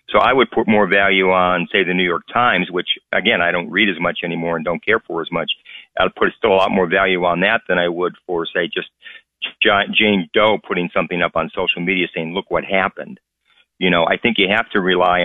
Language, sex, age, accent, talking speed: English, male, 50-69, American, 240 wpm